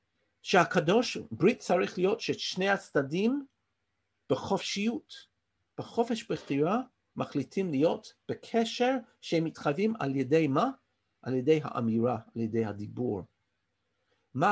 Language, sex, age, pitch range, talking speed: Hebrew, male, 50-69, 140-225 Hz, 105 wpm